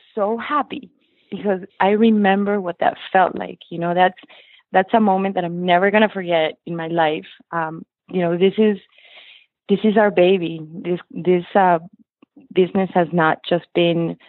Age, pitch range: 20-39, 170-205 Hz